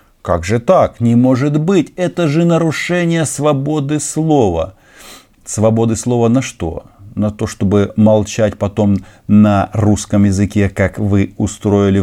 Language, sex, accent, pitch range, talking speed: Russian, male, native, 100-135 Hz, 130 wpm